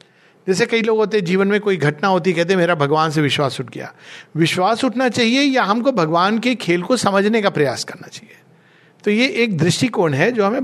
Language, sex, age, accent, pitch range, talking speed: Hindi, male, 50-69, native, 155-215 Hz, 220 wpm